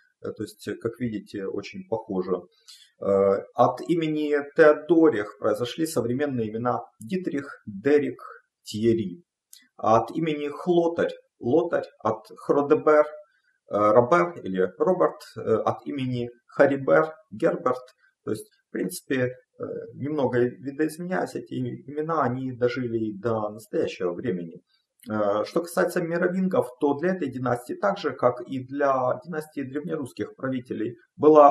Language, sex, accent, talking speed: Russian, male, native, 110 wpm